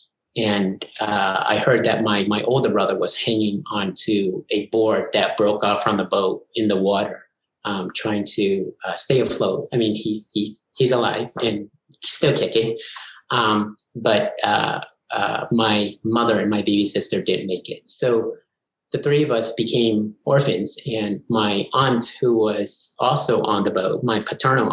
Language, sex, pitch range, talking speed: English, male, 105-120 Hz, 170 wpm